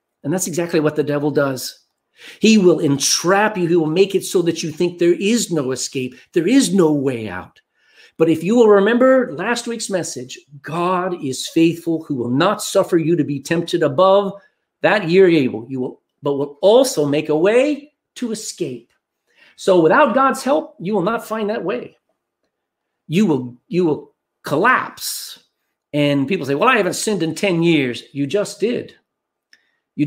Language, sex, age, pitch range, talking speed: English, male, 50-69, 150-210 Hz, 180 wpm